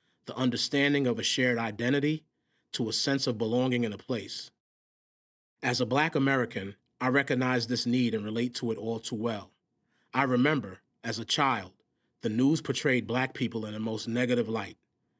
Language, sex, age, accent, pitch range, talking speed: English, male, 30-49, American, 115-140 Hz, 175 wpm